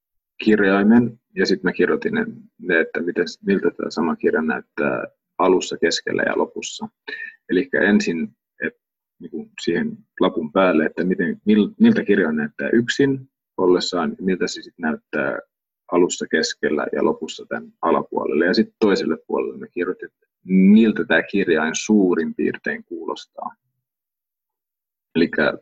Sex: male